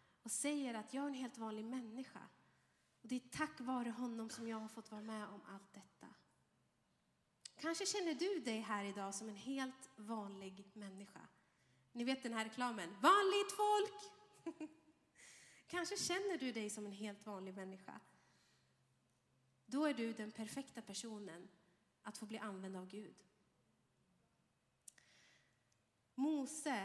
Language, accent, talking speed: Swedish, native, 145 wpm